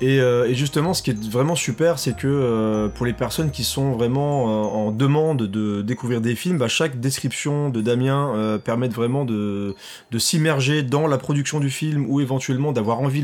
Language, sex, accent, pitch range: French, male, French, 115-145 Hz